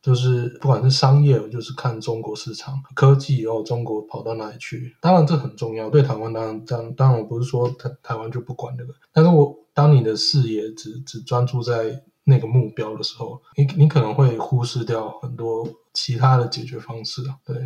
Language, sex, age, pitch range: Chinese, male, 20-39, 115-140 Hz